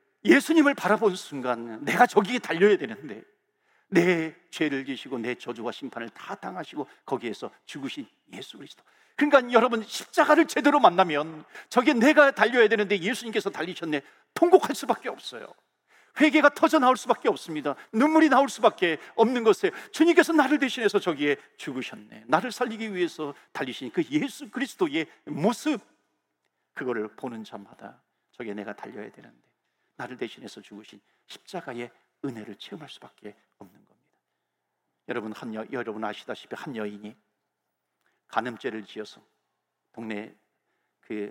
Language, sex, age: Korean, male, 50-69